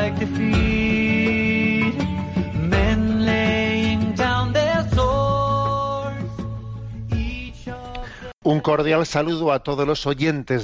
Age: 40-59